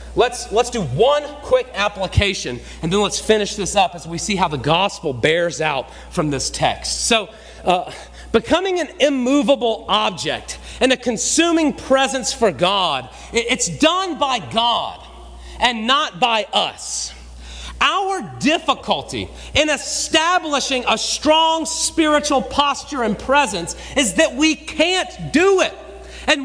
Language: English